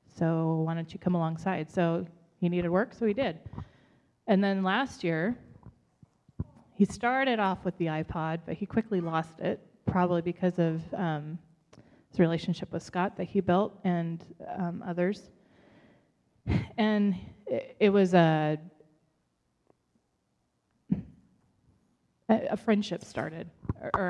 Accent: American